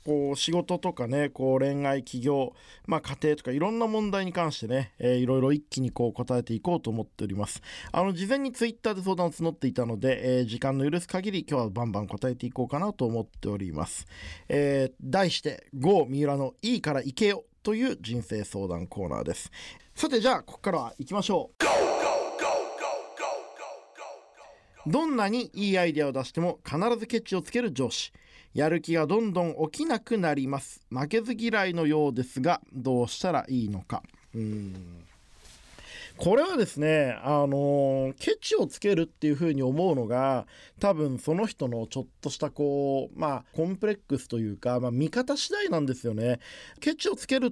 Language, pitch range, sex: Japanese, 125-185 Hz, male